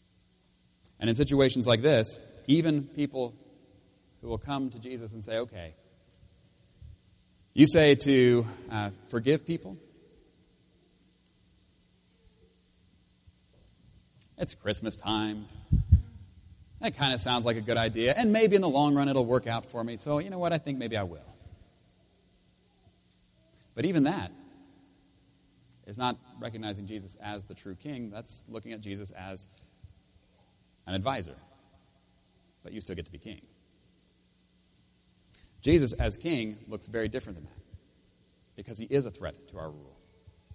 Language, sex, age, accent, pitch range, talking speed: English, male, 30-49, American, 90-125 Hz, 140 wpm